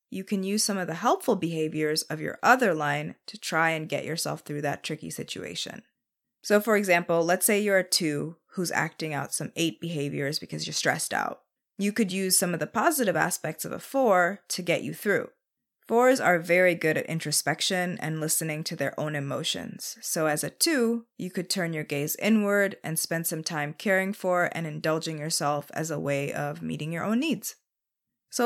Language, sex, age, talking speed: English, female, 20-39, 200 wpm